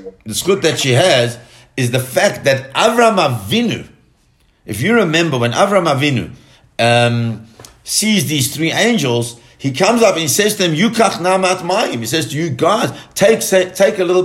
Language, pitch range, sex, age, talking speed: English, 120-180 Hz, male, 50-69, 175 wpm